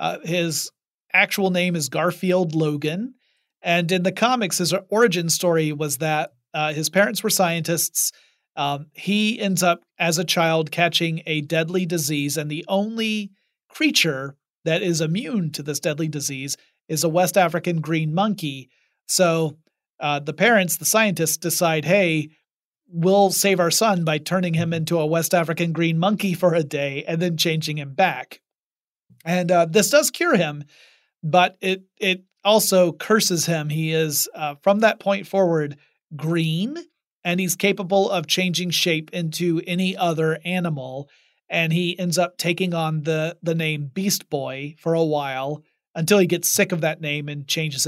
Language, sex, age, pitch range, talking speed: English, male, 30-49, 155-185 Hz, 165 wpm